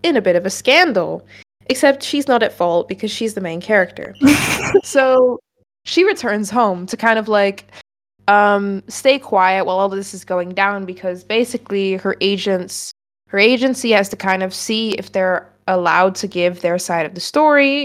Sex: female